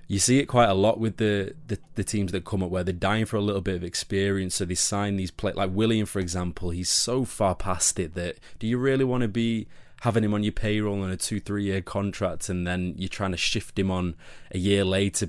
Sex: male